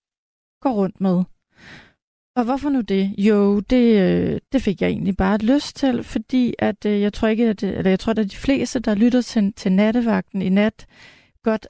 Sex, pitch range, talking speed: female, 190-225 Hz, 185 wpm